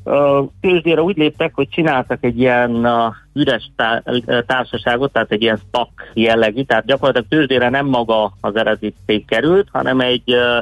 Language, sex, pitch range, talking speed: Hungarian, male, 105-135 Hz, 135 wpm